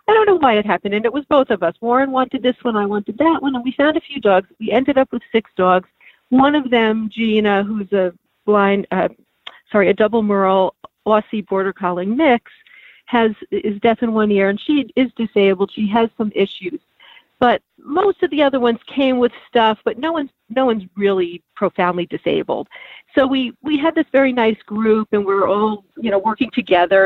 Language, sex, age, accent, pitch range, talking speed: English, female, 50-69, American, 190-240 Hz, 210 wpm